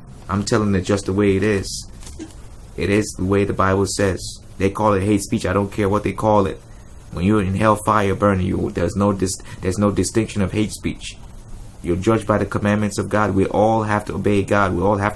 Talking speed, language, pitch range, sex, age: 235 wpm, English, 95-105 Hz, male, 30-49